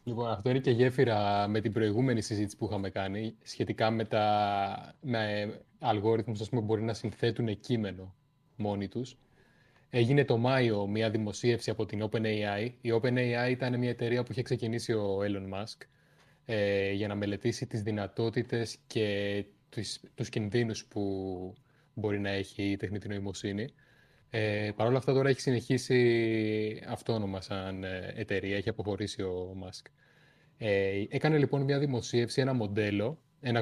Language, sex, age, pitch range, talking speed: Greek, male, 20-39, 105-130 Hz, 140 wpm